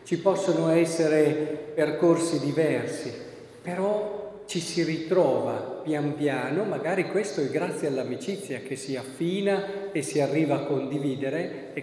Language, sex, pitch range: Italian, male, 150-200 Hz